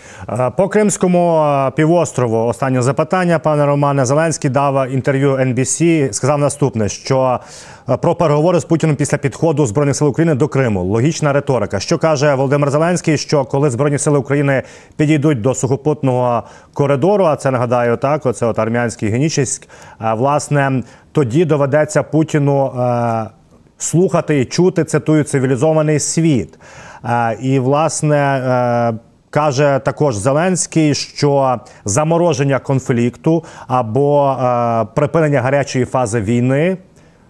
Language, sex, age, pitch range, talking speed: Ukrainian, male, 30-49, 125-155 Hz, 120 wpm